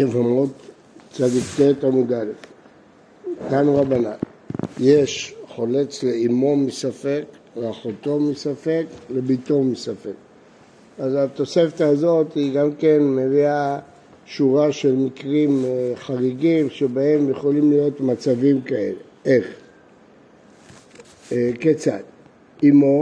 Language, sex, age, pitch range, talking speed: Hebrew, male, 60-79, 135-165 Hz, 85 wpm